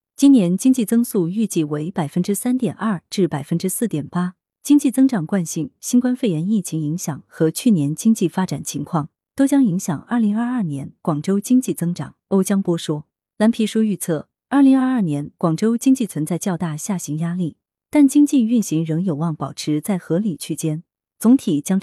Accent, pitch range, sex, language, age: native, 160-230 Hz, female, Chinese, 30-49